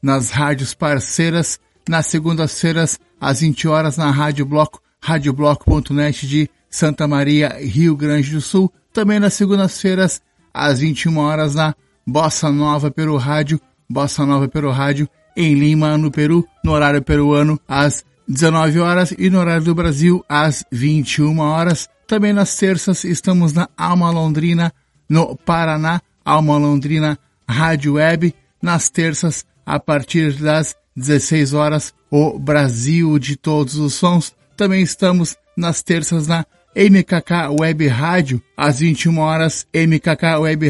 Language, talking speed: Portuguese, 135 wpm